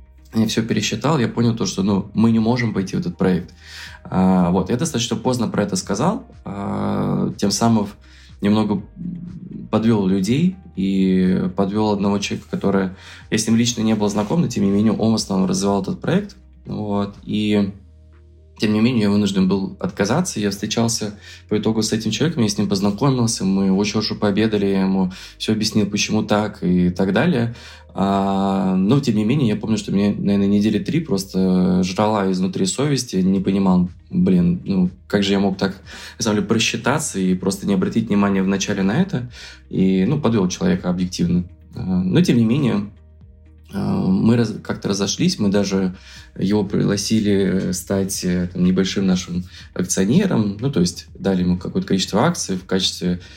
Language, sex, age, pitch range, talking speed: Russian, male, 20-39, 95-110 Hz, 170 wpm